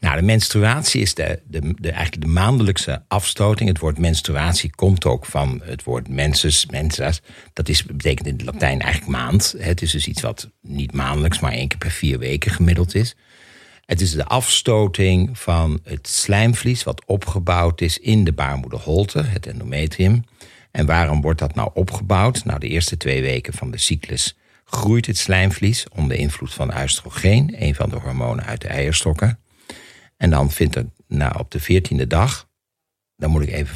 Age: 60-79